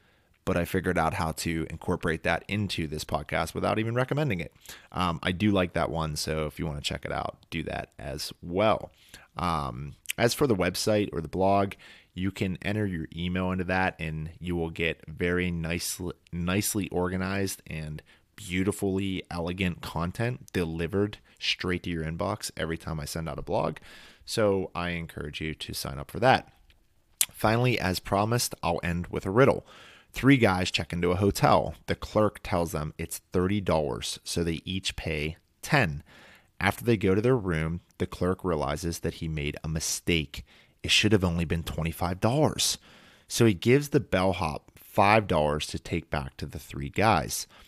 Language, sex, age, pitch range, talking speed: English, male, 30-49, 80-100 Hz, 175 wpm